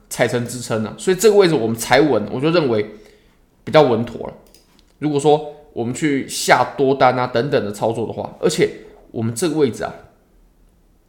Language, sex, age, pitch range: Chinese, male, 20-39, 115-175 Hz